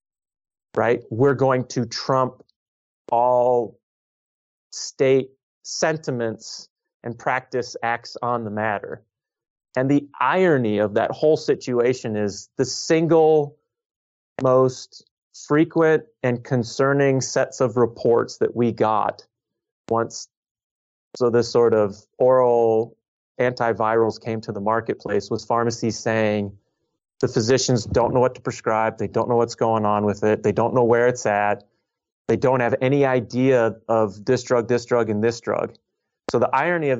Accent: American